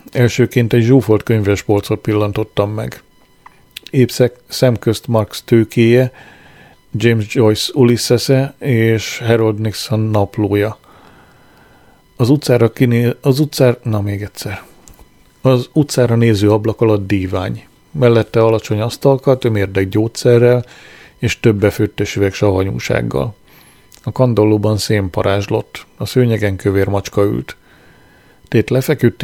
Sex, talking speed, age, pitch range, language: male, 105 wpm, 40-59, 105-125 Hz, Hungarian